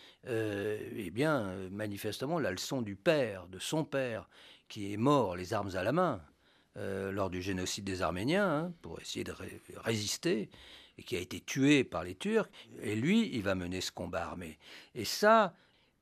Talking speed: 185 wpm